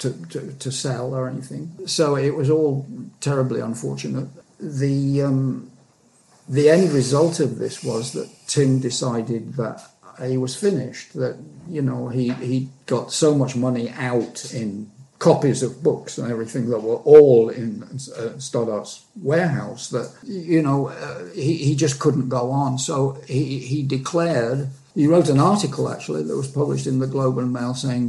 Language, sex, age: English, male, 50-69